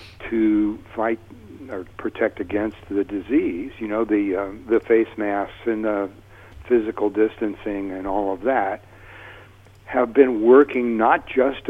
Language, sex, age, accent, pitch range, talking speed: English, male, 60-79, American, 100-120 Hz, 140 wpm